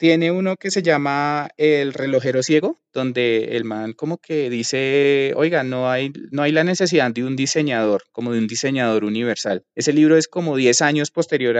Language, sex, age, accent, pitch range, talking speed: Spanish, male, 20-39, Colombian, 130-160 Hz, 185 wpm